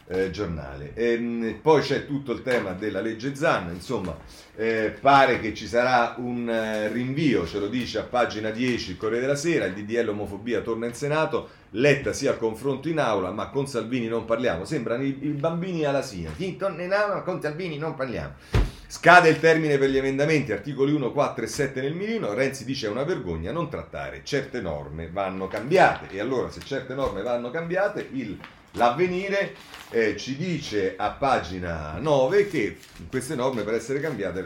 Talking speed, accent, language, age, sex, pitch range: 185 wpm, native, Italian, 40-59, male, 105-155 Hz